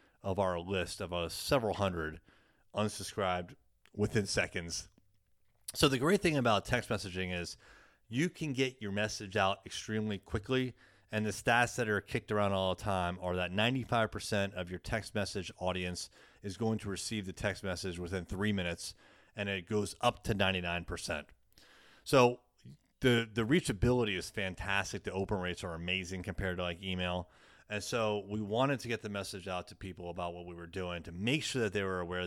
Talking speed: 180 wpm